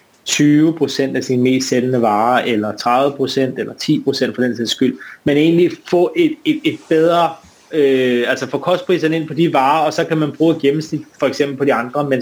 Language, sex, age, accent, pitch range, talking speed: Danish, male, 30-49, native, 125-150 Hz, 205 wpm